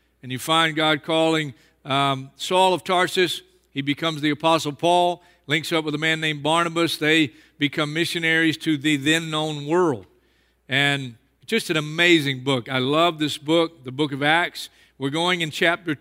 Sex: male